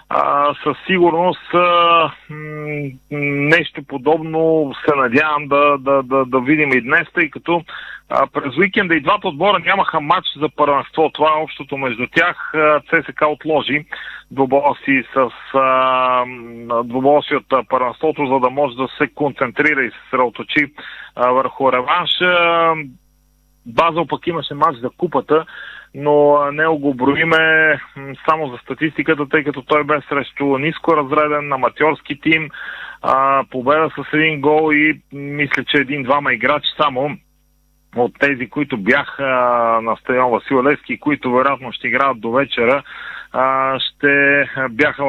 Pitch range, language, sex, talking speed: 135-155 Hz, Bulgarian, male, 130 wpm